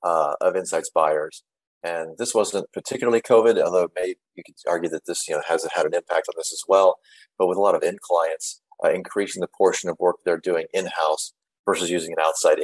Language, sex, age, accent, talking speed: English, male, 30-49, American, 225 wpm